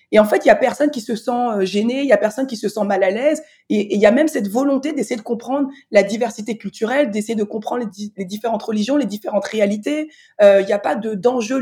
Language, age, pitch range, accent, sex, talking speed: French, 20-39, 215-285 Hz, French, female, 270 wpm